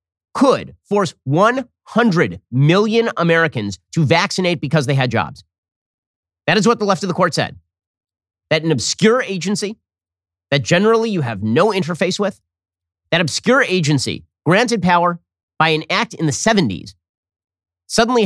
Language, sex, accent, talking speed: English, male, American, 140 wpm